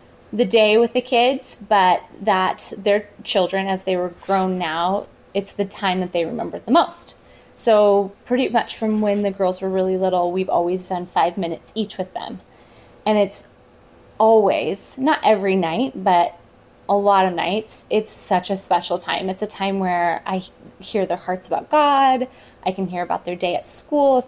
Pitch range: 180-205 Hz